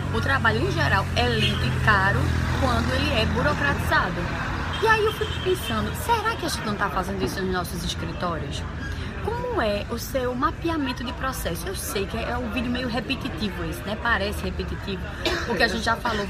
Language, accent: Portuguese, Brazilian